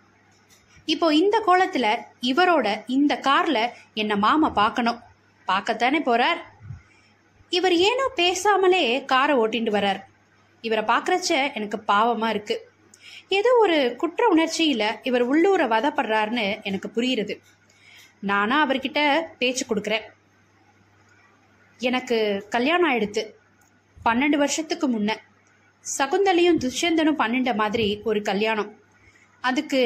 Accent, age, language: native, 20-39, Tamil